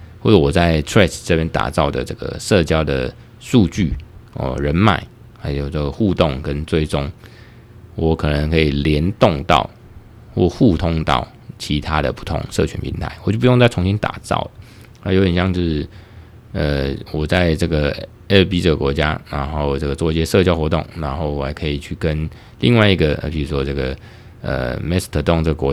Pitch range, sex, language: 75-100 Hz, male, Chinese